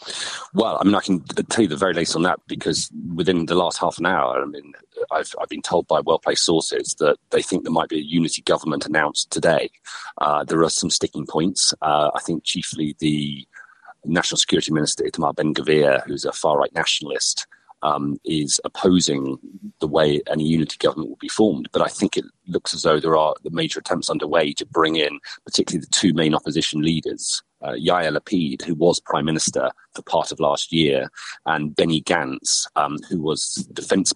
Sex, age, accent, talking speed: male, 40-59, British, 195 wpm